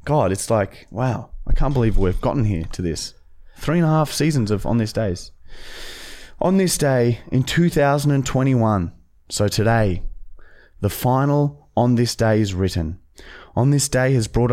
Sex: male